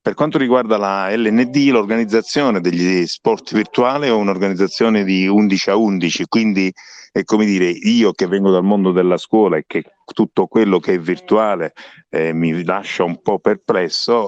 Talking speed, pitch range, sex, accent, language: 165 wpm, 90-110 Hz, male, native, Italian